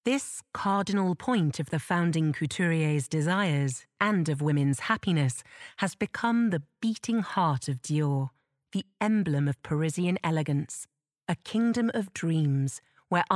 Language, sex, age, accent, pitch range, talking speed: English, female, 40-59, British, 145-200 Hz, 130 wpm